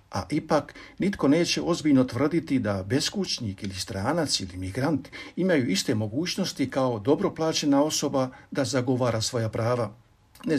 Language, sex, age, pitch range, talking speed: Croatian, male, 50-69, 110-150 Hz, 130 wpm